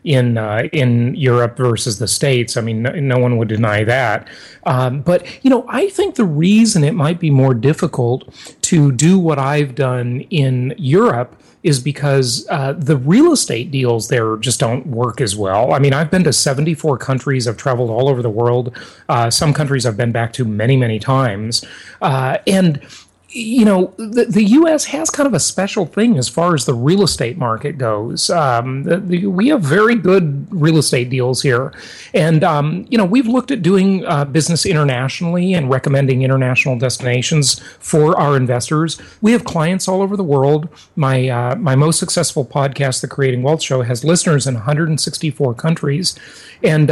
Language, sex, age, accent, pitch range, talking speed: English, male, 30-49, American, 125-175 Hz, 185 wpm